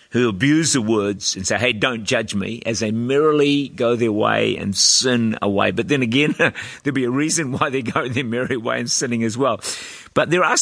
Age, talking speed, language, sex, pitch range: 50-69, 225 wpm, English, male, 115-145 Hz